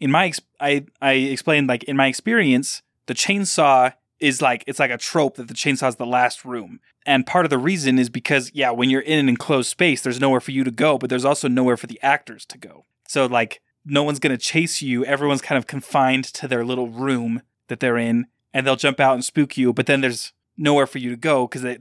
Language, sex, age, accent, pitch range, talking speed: English, male, 20-39, American, 125-140 Hz, 240 wpm